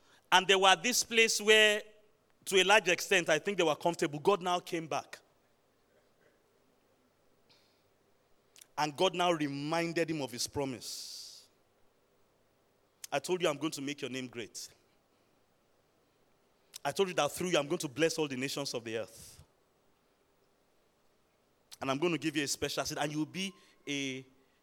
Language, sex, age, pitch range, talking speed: English, male, 30-49, 140-185 Hz, 165 wpm